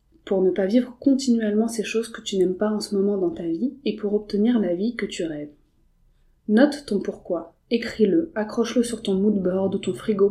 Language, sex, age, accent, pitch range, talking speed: French, female, 20-39, French, 185-220 Hz, 210 wpm